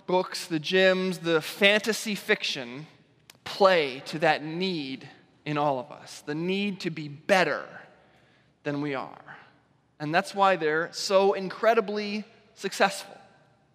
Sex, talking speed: male, 125 wpm